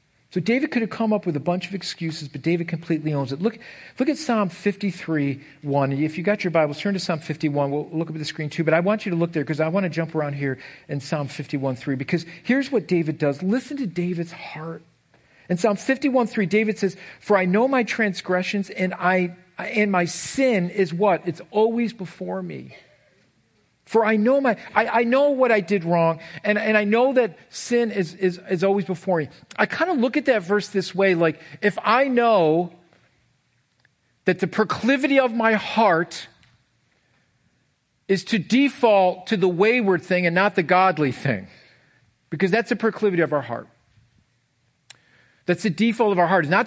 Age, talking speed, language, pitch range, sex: 50-69, 195 wpm, English, 155-215 Hz, male